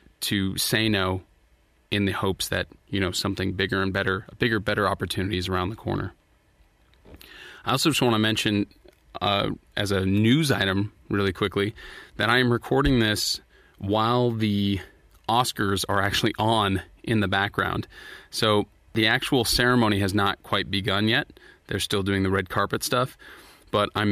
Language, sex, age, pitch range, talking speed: English, male, 30-49, 95-110 Hz, 160 wpm